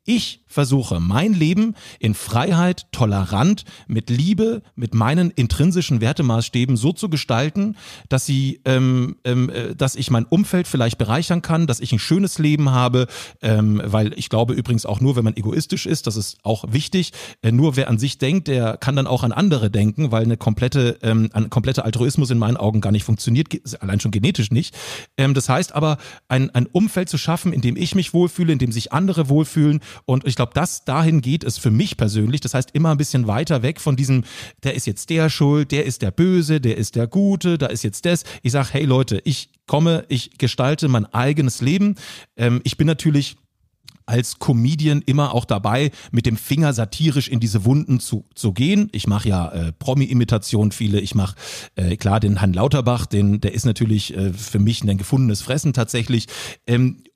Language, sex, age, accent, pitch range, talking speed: German, male, 40-59, German, 115-155 Hz, 190 wpm